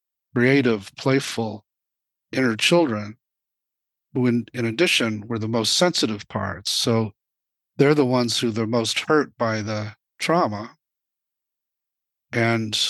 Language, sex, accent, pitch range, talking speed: English, male, American, 110-130 Hz, 120 wpm